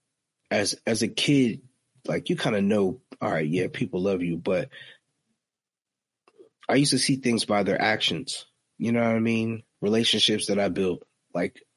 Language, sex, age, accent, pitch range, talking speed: English, male, 30-49, American, 95-125 Hz, 175 wpm